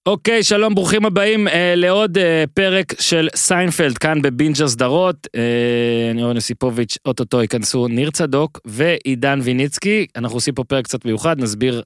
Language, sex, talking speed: Hebrew, male, 150 wpm